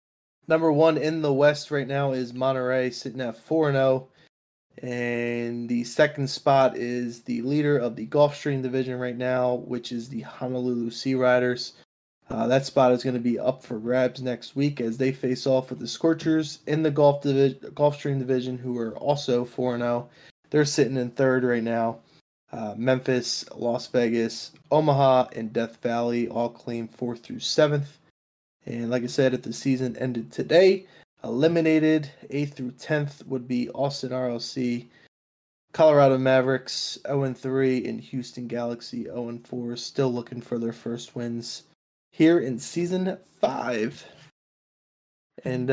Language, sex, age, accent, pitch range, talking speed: English, male, 20-39, American, 120-145 Hz, 145 wpm